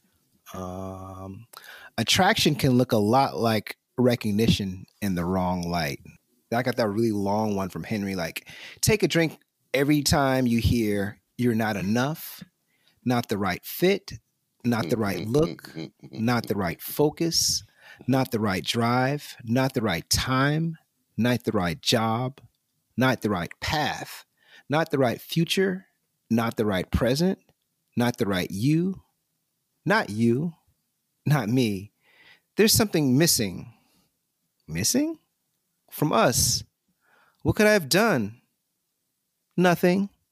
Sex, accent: male, American